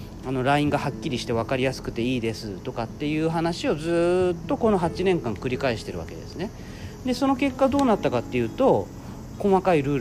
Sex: male